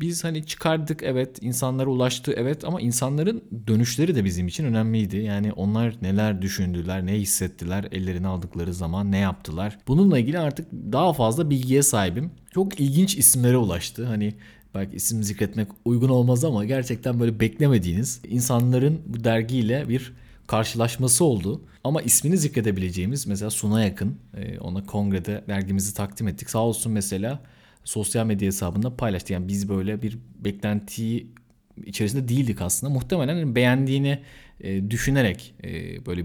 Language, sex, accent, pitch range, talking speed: Turkish, male, native, 100-130 Hz, 135 wpm